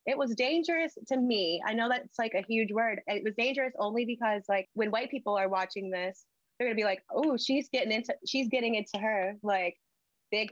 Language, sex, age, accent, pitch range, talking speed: English, female, 20-39, American, 205-270 Hz, 220 wpm